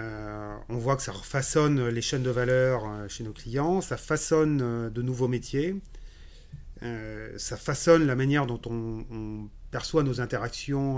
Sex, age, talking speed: male, 30-49, 160 wpm